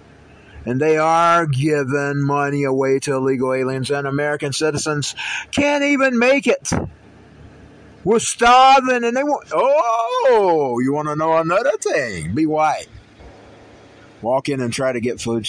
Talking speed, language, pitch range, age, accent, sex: 145 wpm, English, 110-155 Hz, 50-69, American, male